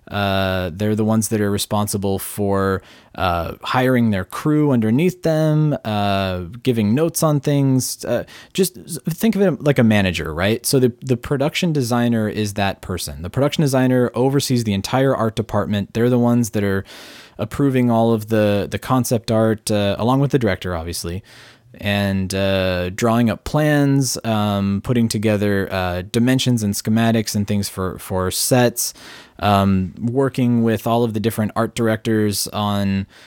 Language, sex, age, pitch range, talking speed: English, male, 20-39, 100-125 Hz, 160 wpm